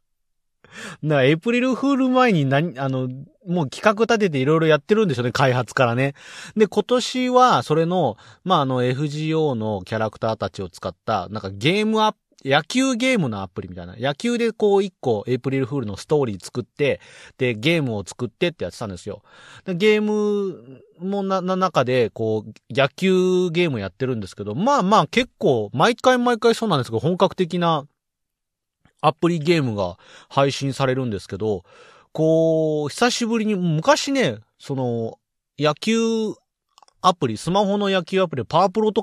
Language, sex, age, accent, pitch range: Japanese, male, 30-49, native, 125-195 Hz